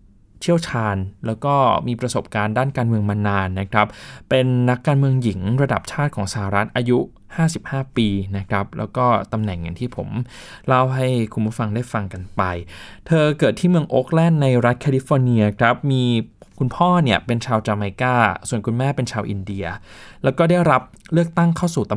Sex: male